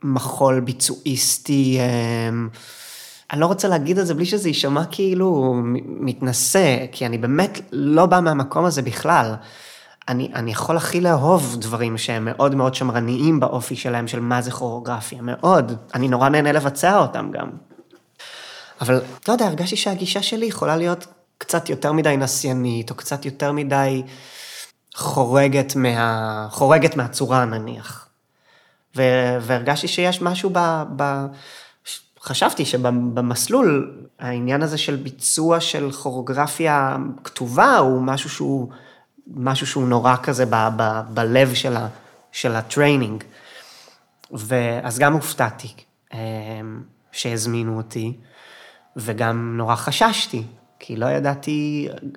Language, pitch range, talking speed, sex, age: Hebrew, 120-150 Hz, 120 wpm, male, 20-39